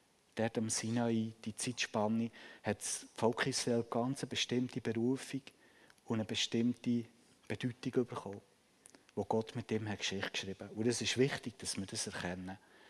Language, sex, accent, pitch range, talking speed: German, male, Swiss, 110-130 Hz, 155 wpm